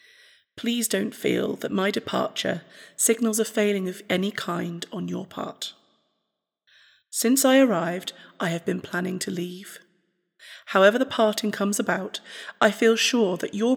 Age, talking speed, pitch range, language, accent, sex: 30-49, 150 wpm, 190-225 Hz, English, British, female